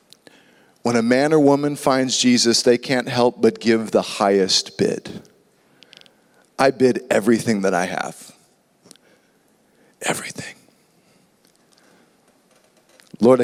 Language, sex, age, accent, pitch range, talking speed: English, male, 40-59, American, 135-185 Hz, 105 wpm